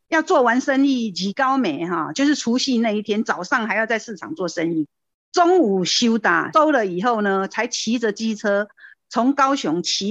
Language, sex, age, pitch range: Chinese, female, 50-69, 190-260 Hz